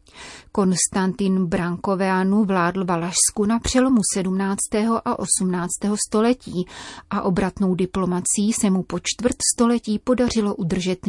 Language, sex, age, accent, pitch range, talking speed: Czech, female, 30-49, native, 185-215 Hz, 110 wpm